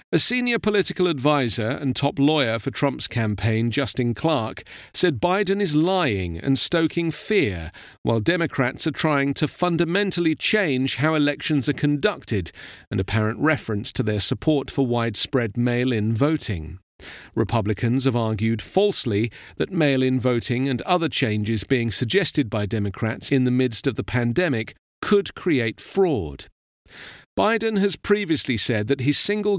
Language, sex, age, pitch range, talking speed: English, male, 40-59, 115-160 Hz, 140 wpm